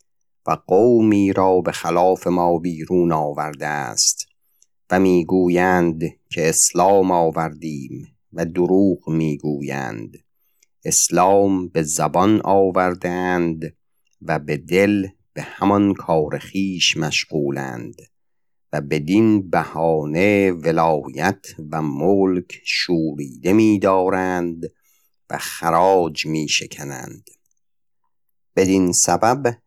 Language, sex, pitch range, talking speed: Persian, male, 85-95 Hz, 90 wpm